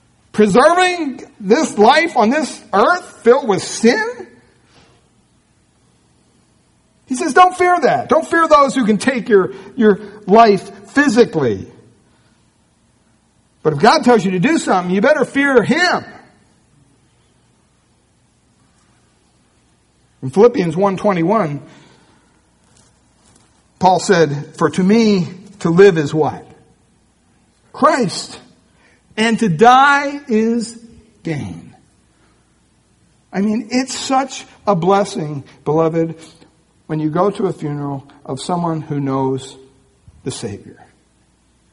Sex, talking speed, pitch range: male, 110 wpm, 175-265 Hz